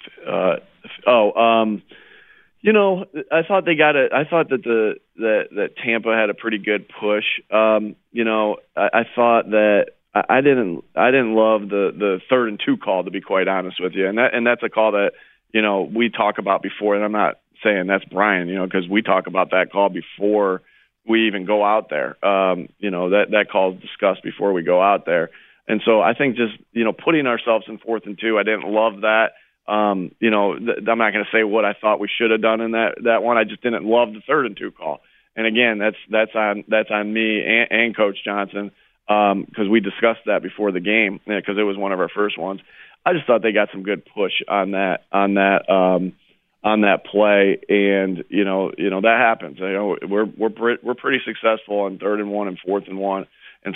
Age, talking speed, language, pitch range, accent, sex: 40-59, 230 wpm, English, 100-115 Hz, American, male